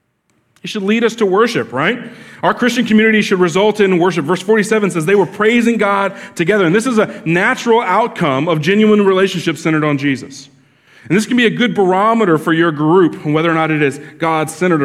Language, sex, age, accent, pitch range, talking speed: English, male, 30-49, American, 130-195 Hz, 205 wpm